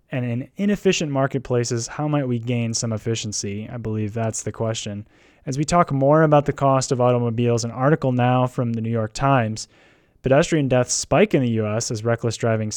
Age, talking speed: 20-39, 195 wpm